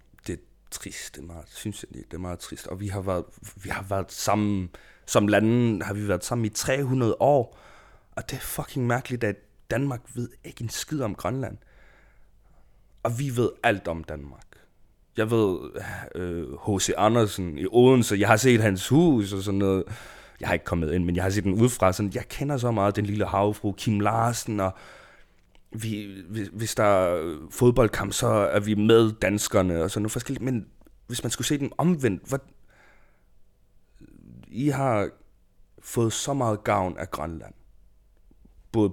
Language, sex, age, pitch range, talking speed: Danish, male, 30-49, 95-120 Hz, 170 wpm